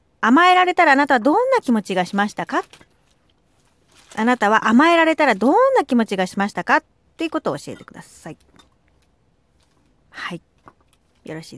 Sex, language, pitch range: female, Japanese, 200-310 Hz